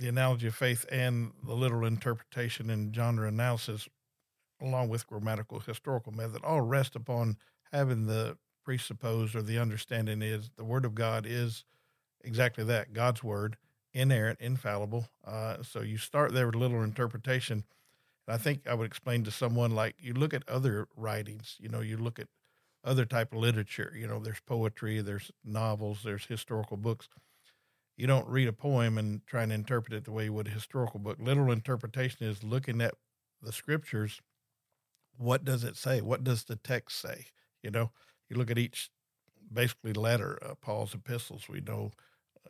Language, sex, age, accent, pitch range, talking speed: English, male, 50-69, American, 110-130 Hz, 175 wpm